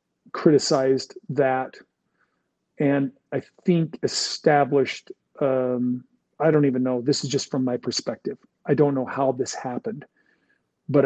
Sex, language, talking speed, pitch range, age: male, English, 130 wpm, 135-150 Hz, 40-59